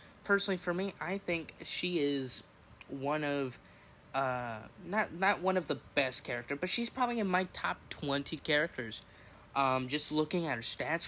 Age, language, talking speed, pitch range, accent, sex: 10-29, English, 170 wpm, 115-155 Hz, American, male